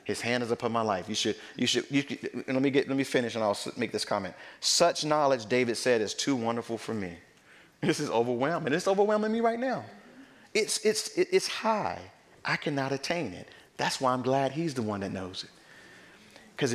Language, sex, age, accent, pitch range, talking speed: English, male, 40-59, American, 100-125 Hz, 215 wpm